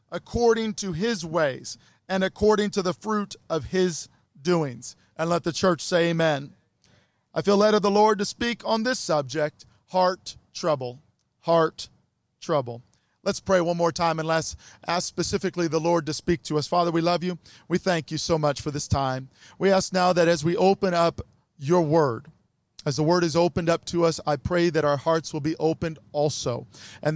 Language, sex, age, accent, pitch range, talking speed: English, male, 40-59, American, 145-175 Hz, 195 wpm